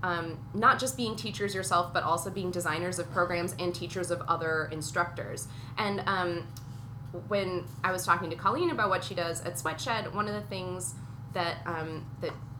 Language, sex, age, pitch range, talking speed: English, female, 20-39, 130-185 Hz, 175 wpm